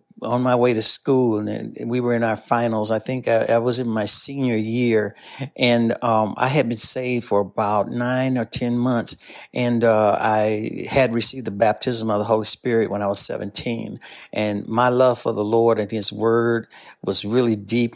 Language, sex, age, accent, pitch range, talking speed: English, male, 60-79, American, 115-160 Hz, 195 wpm